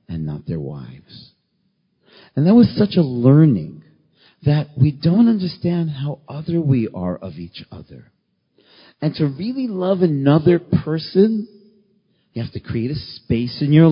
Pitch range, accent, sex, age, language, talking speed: 110-150 Hz, American, male, 40-59, English, 150 wpm